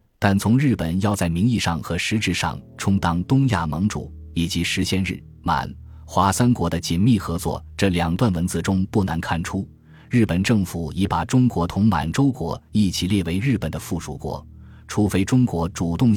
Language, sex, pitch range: Chinese, male, 85-115 Hz